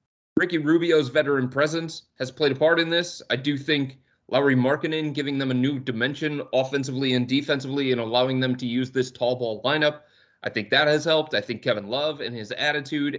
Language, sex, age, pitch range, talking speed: English, male, 30-49, 125-155 Hz, 200 wpm